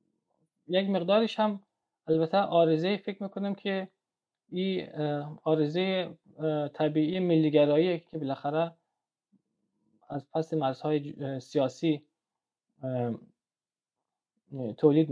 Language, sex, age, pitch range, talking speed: Persian, male, 20-39, 135-175 Hz, 80 wpm